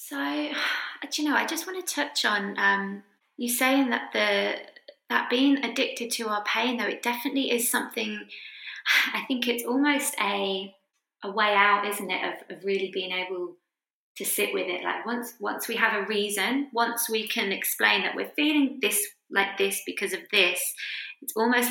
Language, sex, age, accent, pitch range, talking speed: English, female, 20-39, British, 185-245 Hz, 180 wpm